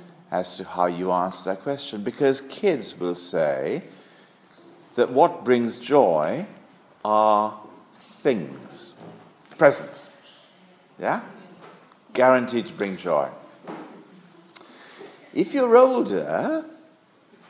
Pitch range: 105-155 Hz